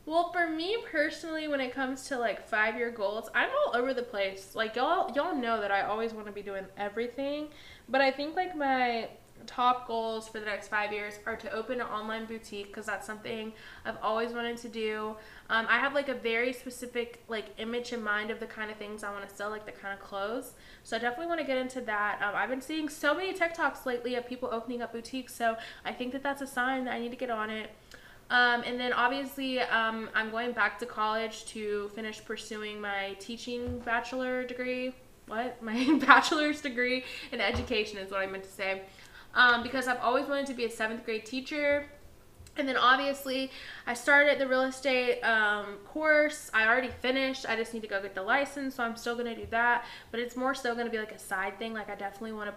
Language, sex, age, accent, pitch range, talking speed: English, female, 10-29, American, 215-265 Hz, 225 wpm